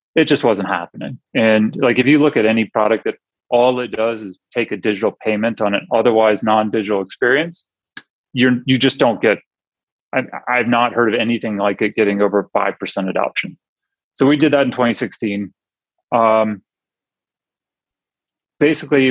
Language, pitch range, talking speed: English, 105-130 Hz, 160 wpm